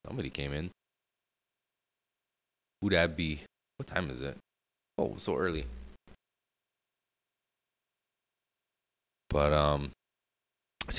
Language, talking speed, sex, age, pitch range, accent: English, 100 wpm, male, 20-39, 80-95 Hz, American